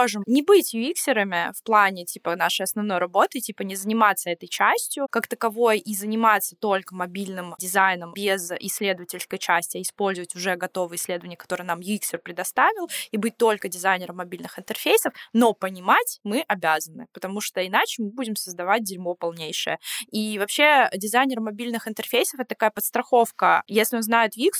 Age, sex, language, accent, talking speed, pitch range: 20-39, female, Russian, native, 155 wpm, 190-230 Hz